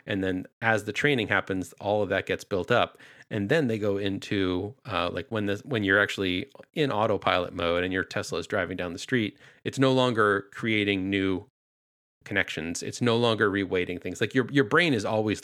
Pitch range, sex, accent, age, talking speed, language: 95-110 Hz, male, American, 30-49, 200 wpm, English